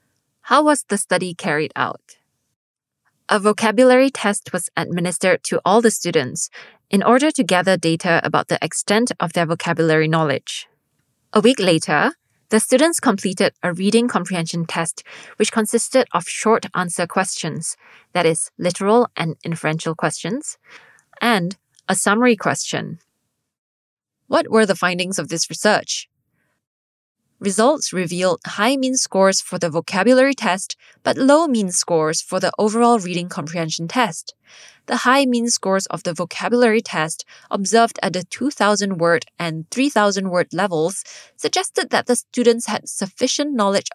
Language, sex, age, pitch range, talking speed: English, female, 20-39, 175-230 Hz, 135 wpm